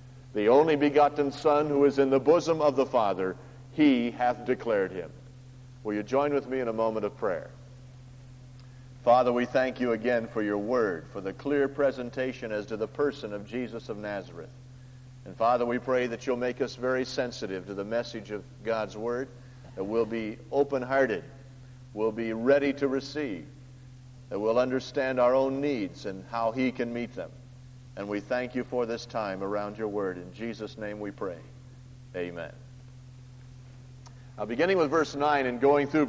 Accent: American